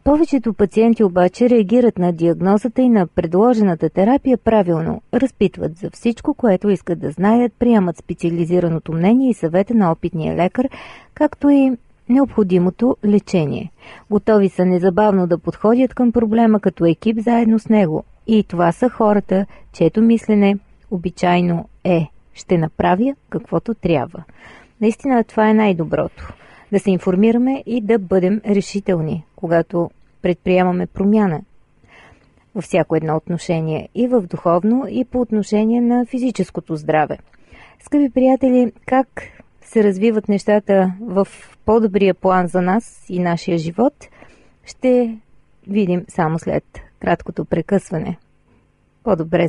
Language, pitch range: Bulgarian, 175-230 Hz